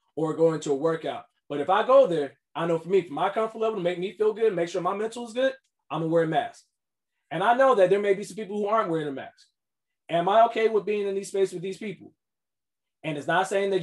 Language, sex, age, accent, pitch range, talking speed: English, male, 20-39, American, 165-215 Hz, 280 wpm